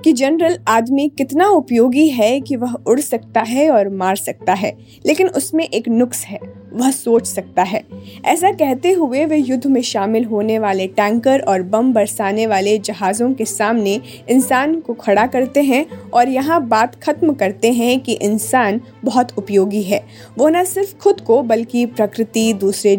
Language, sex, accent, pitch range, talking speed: Hindi, female, native, 215-285 Hz, 170 wpm